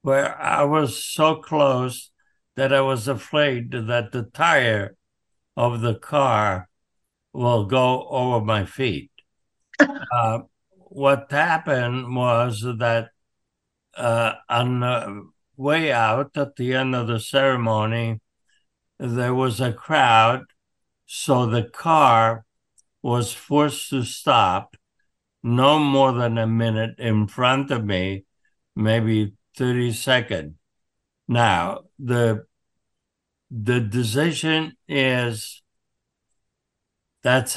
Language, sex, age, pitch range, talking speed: English, male, 60-79, 110-130 Hz, 100 wpm